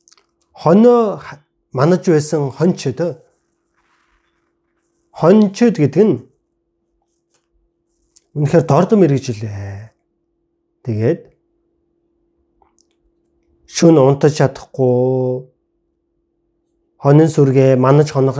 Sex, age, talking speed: male, 30-49, 70 wpm